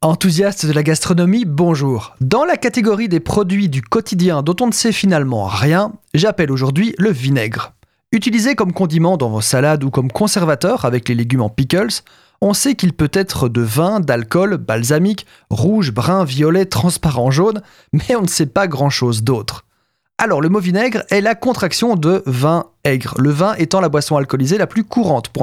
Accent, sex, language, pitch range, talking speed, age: French, male, French, 135-200 Hz, 185 wpm, 30-49